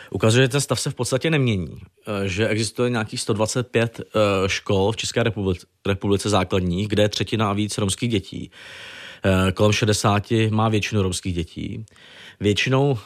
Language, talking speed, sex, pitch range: Czech, 145 wpm, male, 100-120 Hz